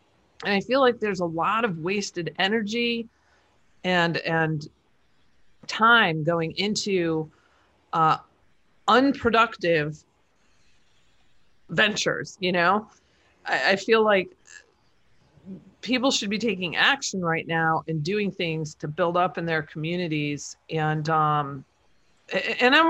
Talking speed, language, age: 115 wpm, English, 40-59